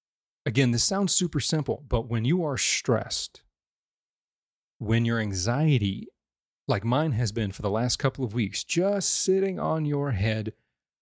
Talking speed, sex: 150 wpm, male